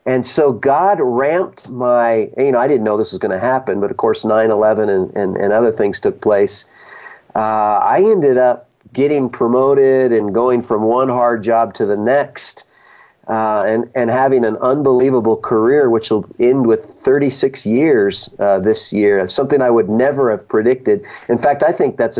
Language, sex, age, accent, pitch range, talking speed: English, male, 50-69, American, 110-125 Hz, 185 wpm